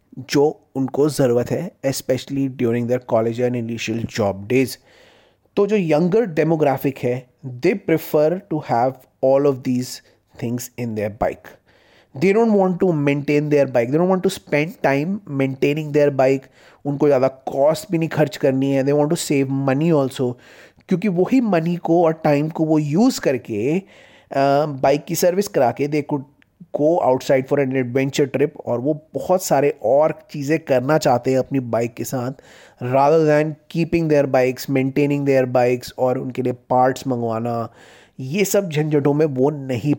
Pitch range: 125-155 Hz